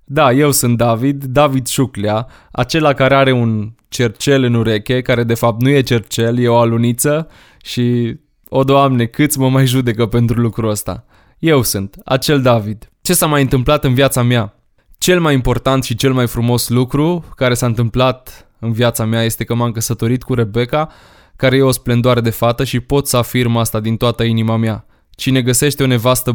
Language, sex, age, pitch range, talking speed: Romanian, male, 20-39, 115-135 Hz, 185 wpm